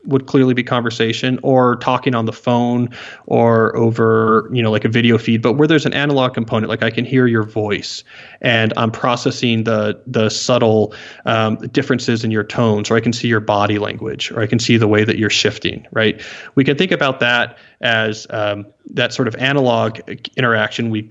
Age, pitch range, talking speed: 30-49, 110-130 Hz, 200 wpm